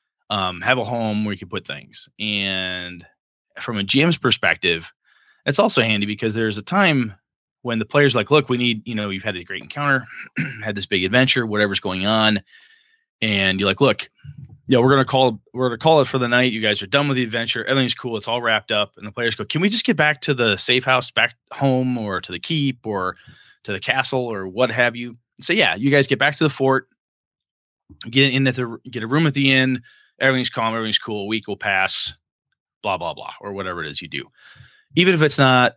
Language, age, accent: English, 20-39, American